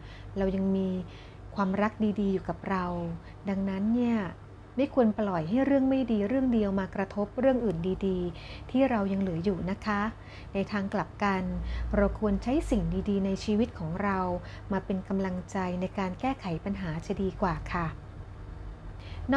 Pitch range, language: 185-225 Hz, Thai